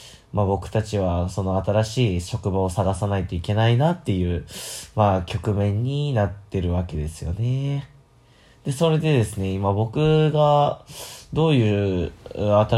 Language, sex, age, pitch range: Japanese, male, 20-39, 100-130 Hz